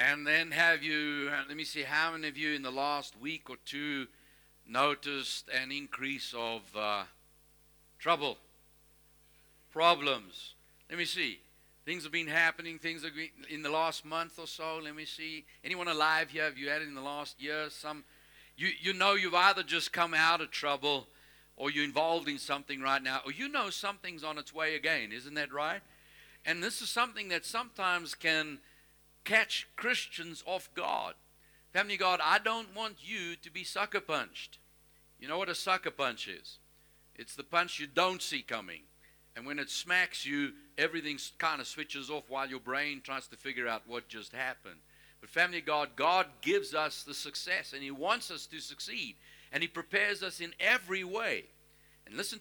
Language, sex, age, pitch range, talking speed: English, male, 50-69, 145-180 Hz, 185 wpm